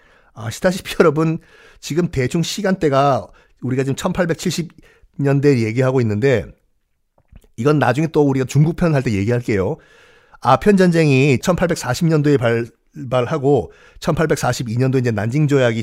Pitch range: 130-195 Hz